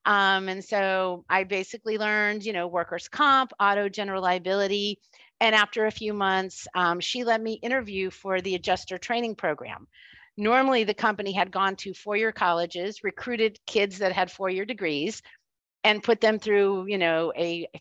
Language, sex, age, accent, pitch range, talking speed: English, female, 40-59, American, 190-225 Hz, 170 wpm